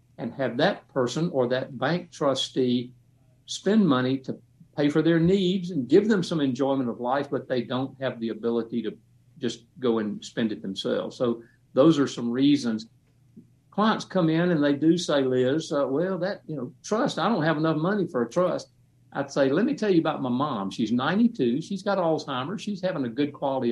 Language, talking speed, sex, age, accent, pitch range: English, 205 wpm, male, 60-79, American, 125-165 Hz